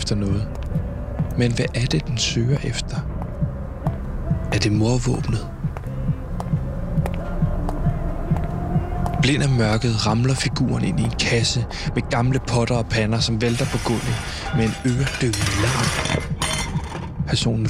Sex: male